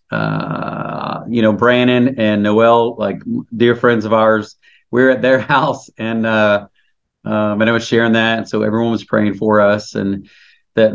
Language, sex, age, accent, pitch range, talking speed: English, male, 40-59, American, 105-125 Hz, 175 wpm